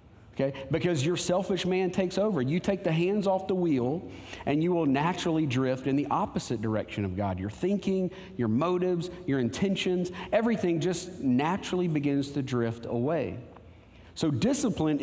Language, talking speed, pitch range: English, 160 wpm, 130-180 Hz